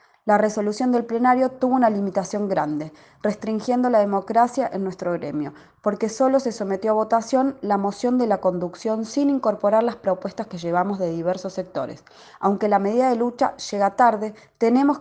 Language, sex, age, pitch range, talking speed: Spanish, female, 20-39, 180-230 Hz, 170 wpm